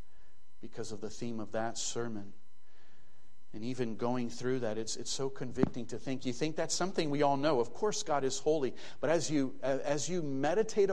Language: English